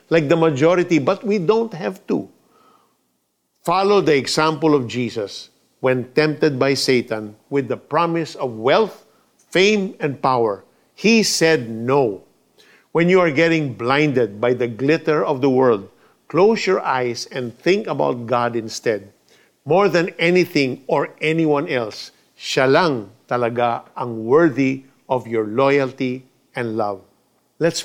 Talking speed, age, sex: 135 wpm, 50-69, male